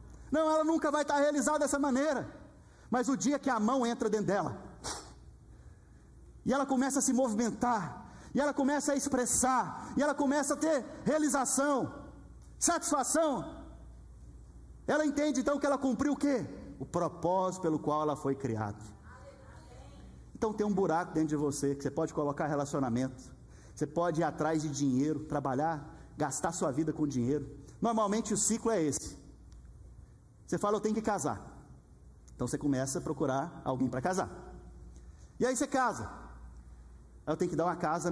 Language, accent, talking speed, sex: Portuguese, Brazilian, 160 wpm, male